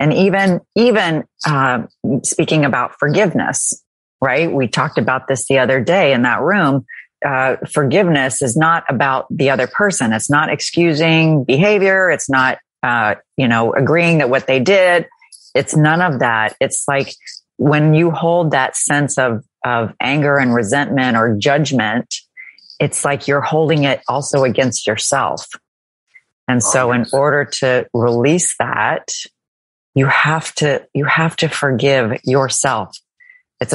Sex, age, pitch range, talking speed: female, 40-59, 125-155 Hz, 145 wpm